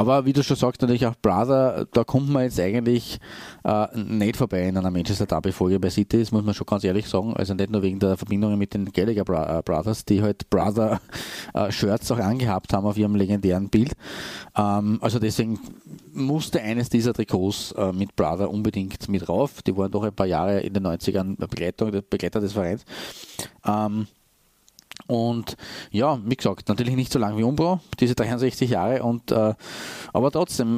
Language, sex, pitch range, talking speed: German, male, 100-125 Hz, 175 wpm